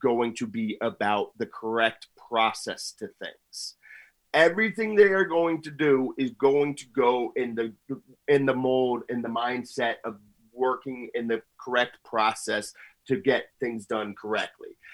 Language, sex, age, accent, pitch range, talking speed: English, male, 30-49, American, 130-165 Hz, 155 wpm